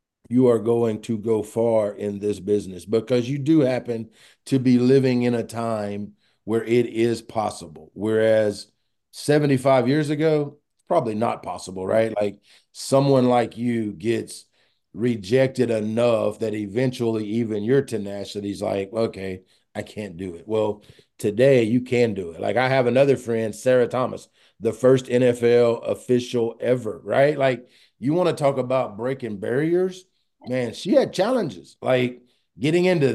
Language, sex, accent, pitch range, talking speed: English, male, American, 105-130 Hz, 150 wpm